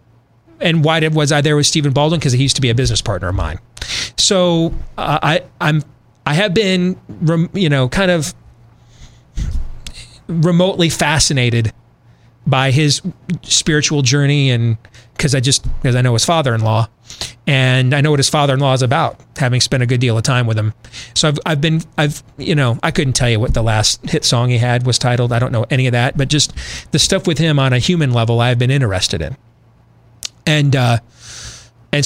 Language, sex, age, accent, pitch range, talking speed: English, male, 30-49, American, 115-150 Hz, 205 wpm